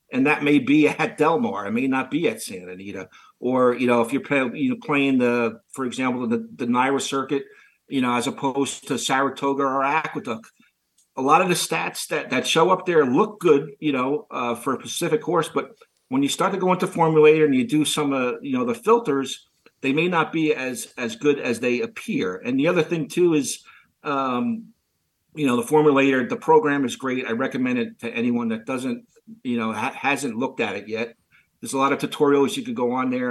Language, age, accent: English, 50-69, American